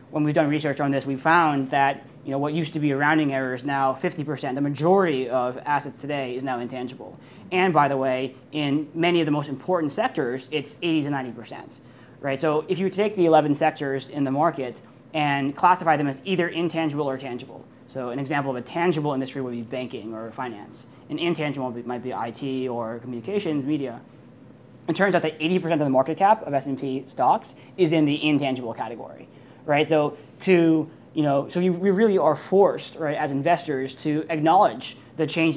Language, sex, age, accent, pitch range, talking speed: English, male, 20-39, American, 130-160 Hz, 200 wpm